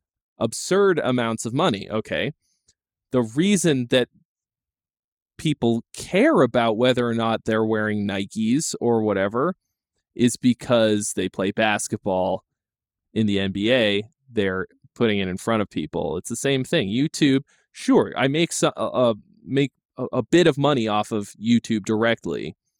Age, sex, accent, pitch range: 20-39, male, American, 105-130 Hz